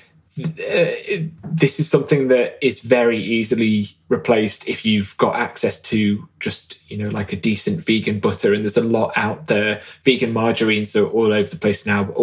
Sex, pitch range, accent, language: male, 115-145 Hz, British, English